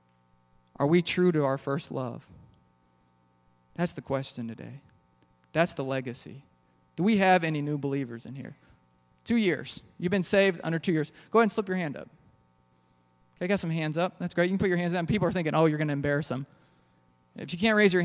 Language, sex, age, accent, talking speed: English, male, 20-39, American, 215 wpm